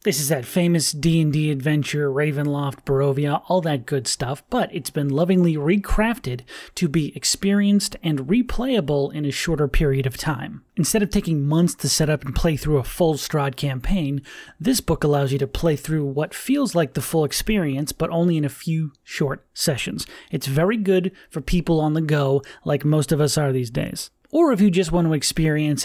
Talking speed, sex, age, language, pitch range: 195 wpm, male, 30-49, English, 140-170 Hz